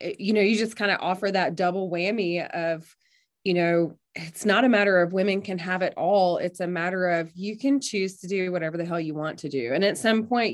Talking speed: 245 wpm